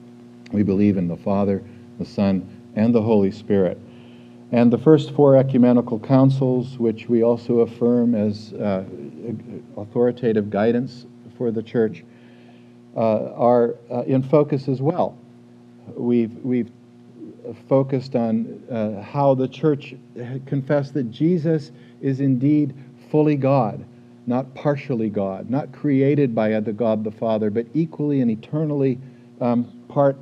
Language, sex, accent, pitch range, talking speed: English, male, American, 115-135 Hz, 130 wpm